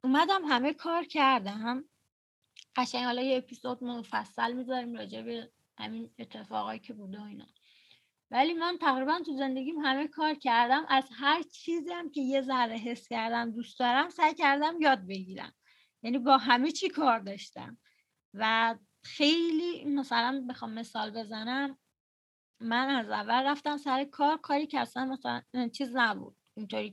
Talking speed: 140 wpm